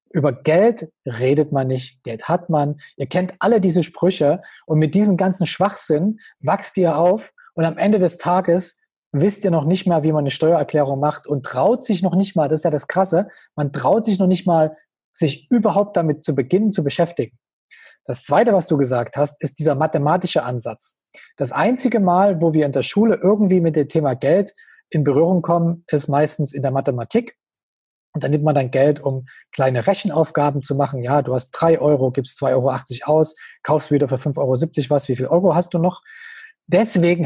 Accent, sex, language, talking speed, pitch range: German, male, German, 200 wpm, 145-185 Hz